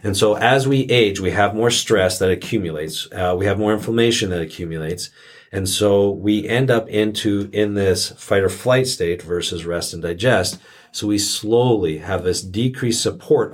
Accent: American